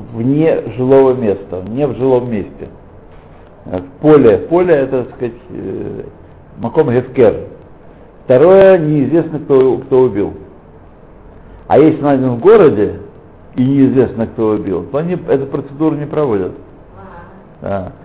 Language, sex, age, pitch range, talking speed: Russian, male, 60-79, 125-160 Hz, 115 wpm